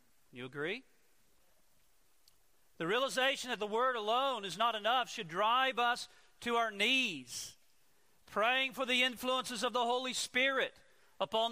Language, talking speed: English, 135 wpm